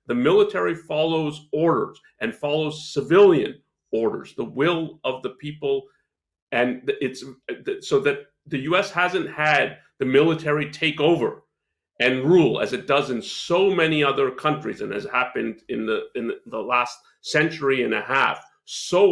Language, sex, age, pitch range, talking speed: English, male, 40-59, 145-235 Hz, 150 wpm